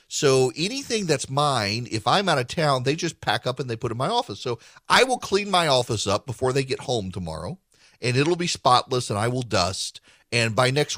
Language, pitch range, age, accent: English, 110-155 Hz, 40-59, American